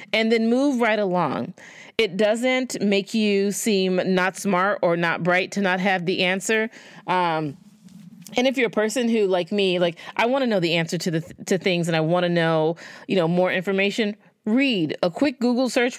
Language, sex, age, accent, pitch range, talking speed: English, female, 30-49, American, 170-210 Hz, 205 wpm